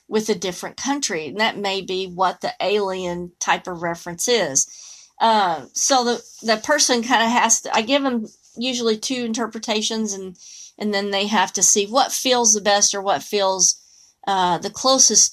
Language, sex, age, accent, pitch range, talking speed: English, female, 40-59, American, 215-260 Hz, 185 wpm